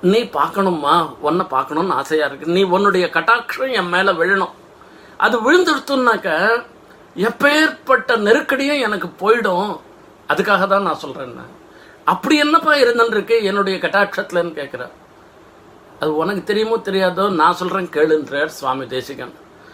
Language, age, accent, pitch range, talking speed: Tamil, 50-69, native, 170-230 Hz, 110 wpm